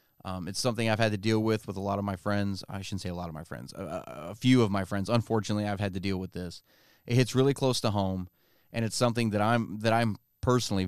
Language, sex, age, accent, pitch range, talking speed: English, male, 30-49, American, 95-120 Hz, 270 wpm